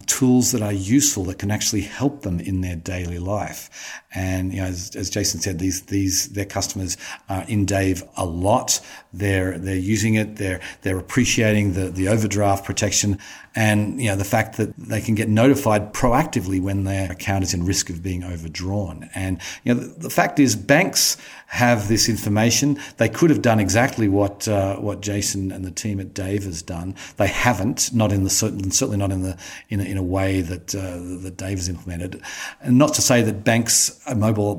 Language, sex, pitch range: English, male, 95-110 Hz